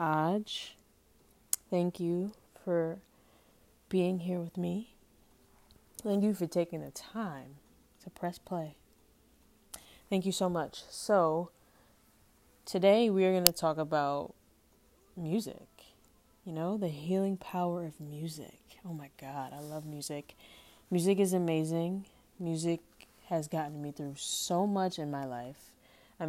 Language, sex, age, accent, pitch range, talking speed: English, female, 20-39, American, 145-180 Hz, 130 wpm